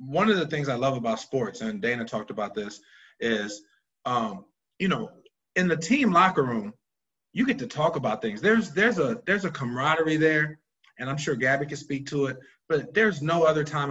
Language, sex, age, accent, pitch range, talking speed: English, male, 30-49, American, 140-185 Hz, 205 wpm